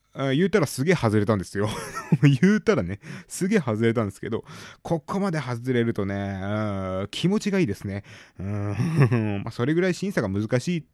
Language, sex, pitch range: Japanese, male, 100-145 Hz